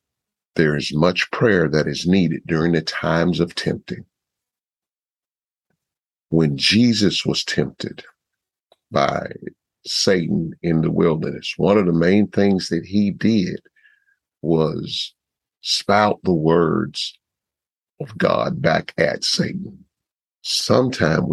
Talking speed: 110 wpm